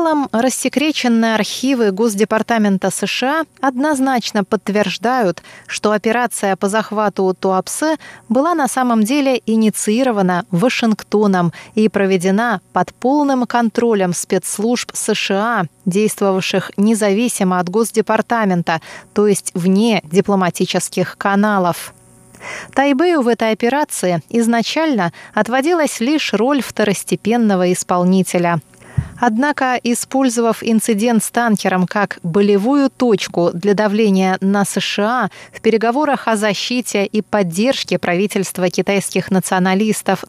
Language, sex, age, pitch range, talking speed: Russian, female, 20-39, 190-245 Hz, 100 wpm